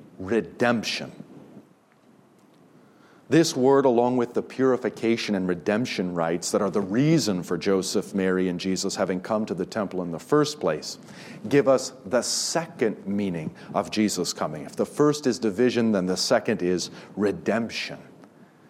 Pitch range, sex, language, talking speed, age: 105-135 Hz, male, English, 150 wpm, 40-59